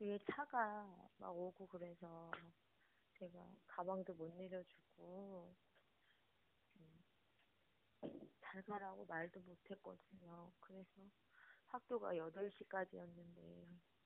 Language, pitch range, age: Korean, 170-195 Hz, 20-39